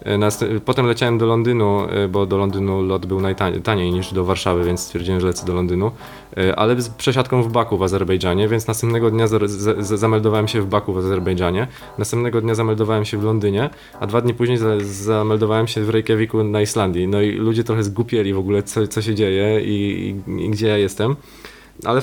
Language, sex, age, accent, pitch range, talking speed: Polish, male, 20-39, native, 105-120 Hz, 200 wpm